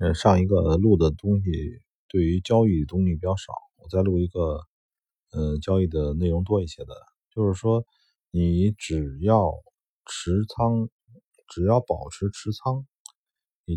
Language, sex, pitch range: Chinese, male, 85-110 Hz